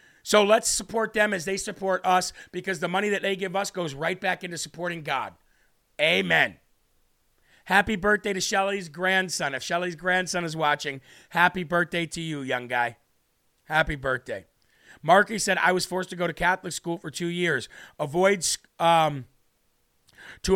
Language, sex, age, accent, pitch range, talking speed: English, male, 40-59, American, 160-190 Hz, 165 wpm